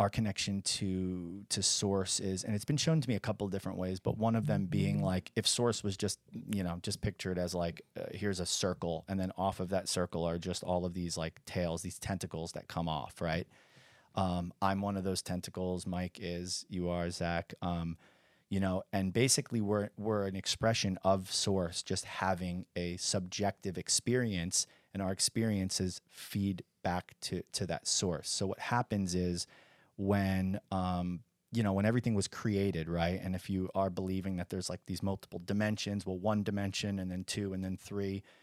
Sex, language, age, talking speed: male, English, 30-49, 195 wpm